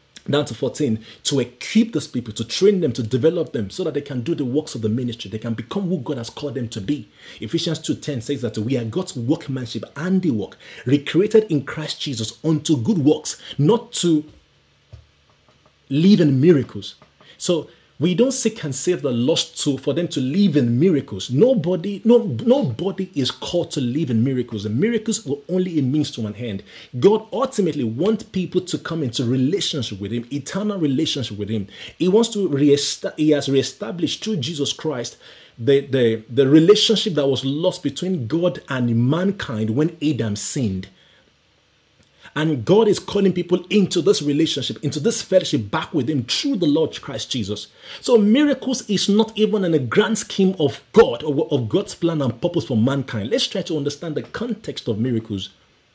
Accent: Nigerian